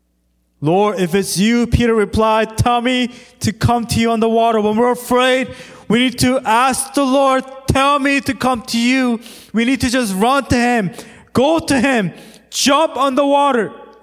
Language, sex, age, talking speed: English, male, 20-39, 190 wpm